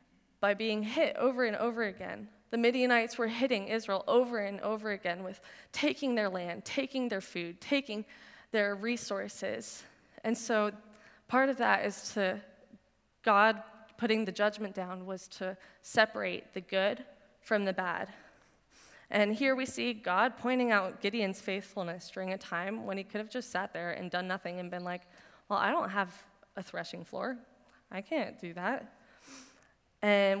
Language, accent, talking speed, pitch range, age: English, American, 165 wpm, 195-235 Hz, 20-39